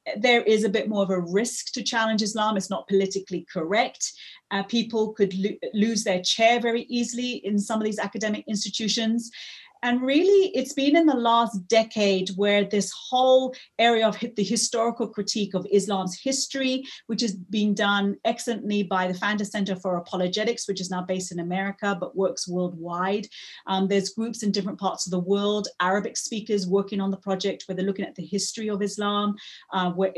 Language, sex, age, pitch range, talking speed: English, female, 30-49, 195-235 Hz, 185 wpm